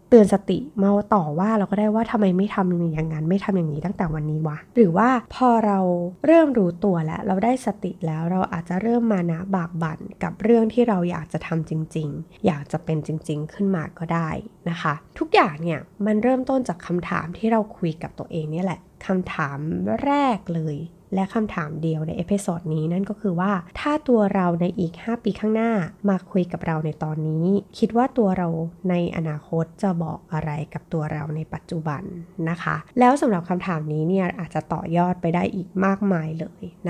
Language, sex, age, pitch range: Thai, female, 20-39, 165-205 Hz